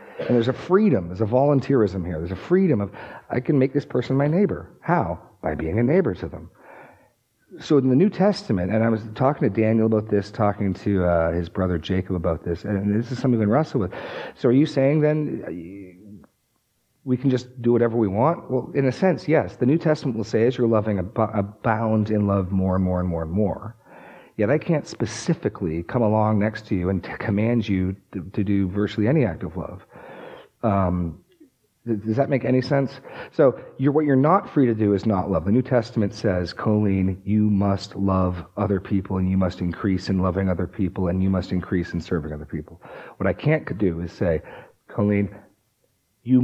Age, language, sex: 40-59, English, male